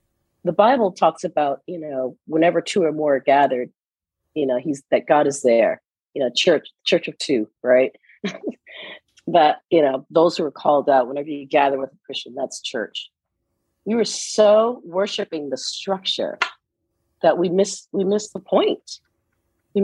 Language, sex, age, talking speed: English, female, 40-59, 170 wpm